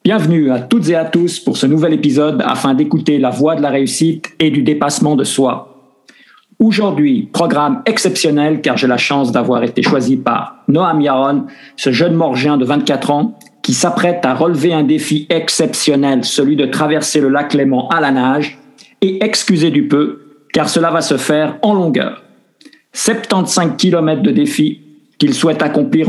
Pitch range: 145-215 Hz